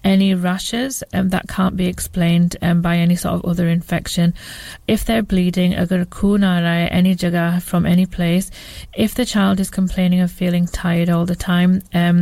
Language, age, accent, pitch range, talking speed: English, 30-49, British, 170-185 Hz, 165 wpm